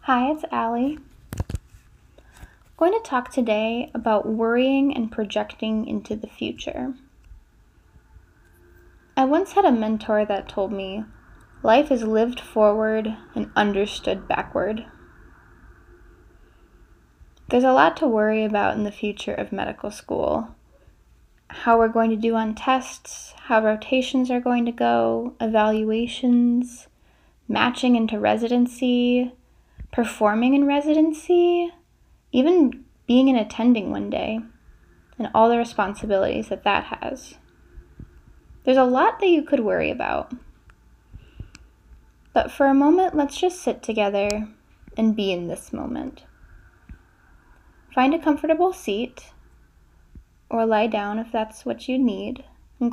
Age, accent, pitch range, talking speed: 10-29, American, 205-260 Hz, 125 wpm